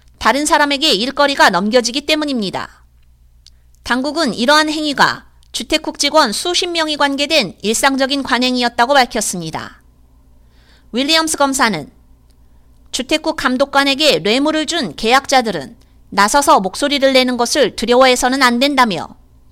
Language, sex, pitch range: Korean, female, 210-310 Hz